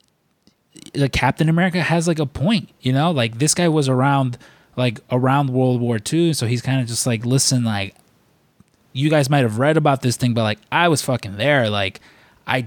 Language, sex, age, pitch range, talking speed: English, male, 20-39, 120-145 Hz, 205 wpm